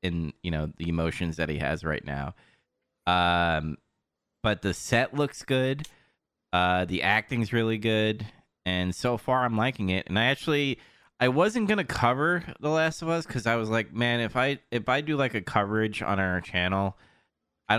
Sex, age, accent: male, 30-49, American